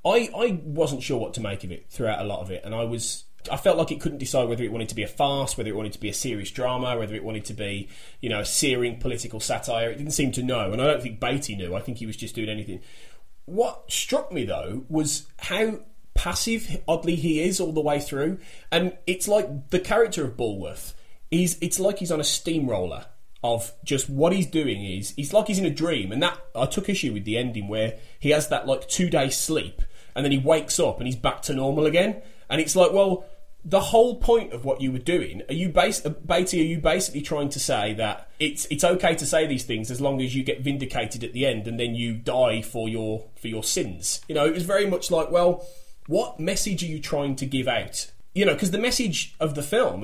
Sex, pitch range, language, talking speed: male, 115-170 Hz, English, 245 wpm